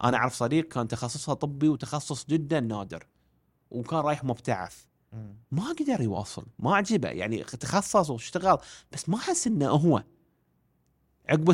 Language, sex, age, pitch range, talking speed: Arabic, male, 30-49, 110-165 Hz, 135 wpm